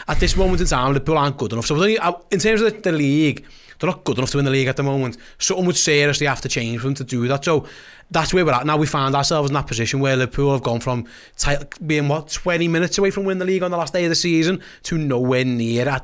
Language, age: English, 30-49